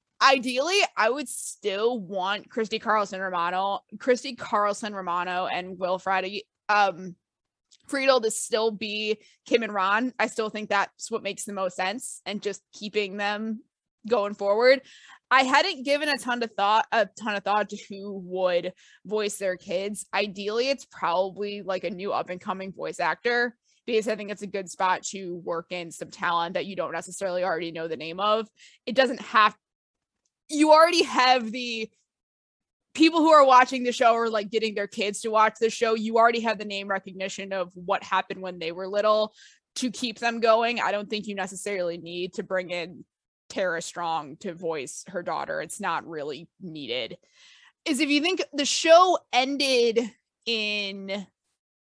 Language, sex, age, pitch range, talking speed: English, female, 20-39, 190-245 Hz, 175 wpm